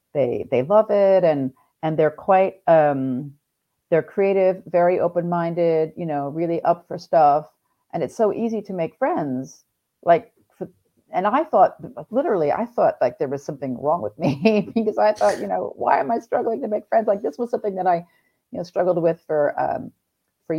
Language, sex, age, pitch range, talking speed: English, female, 40-59, 155-195 Hz, 195 wpm